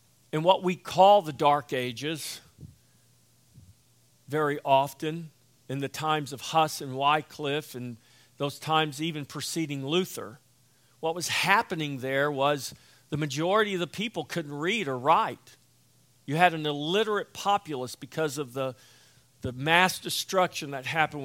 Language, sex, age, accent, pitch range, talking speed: English, male, 50-69, American, 125-160 Hz, 140 wpm